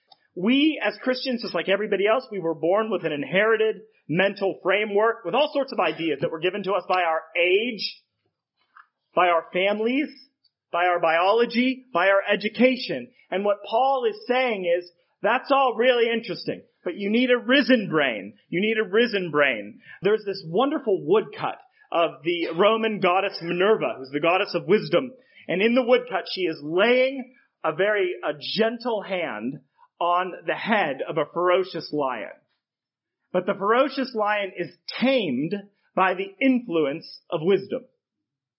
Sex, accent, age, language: male, American, 30-49, English